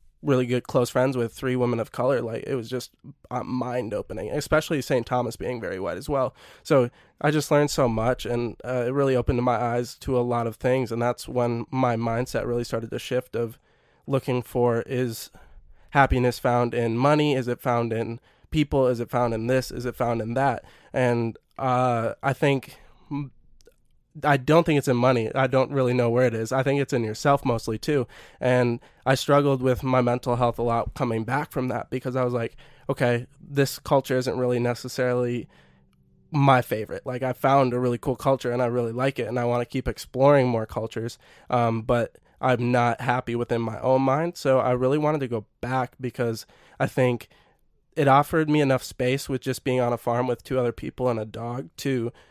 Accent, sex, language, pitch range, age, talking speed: American, male, English, 120-135 Hz, 20-39, 205 wpm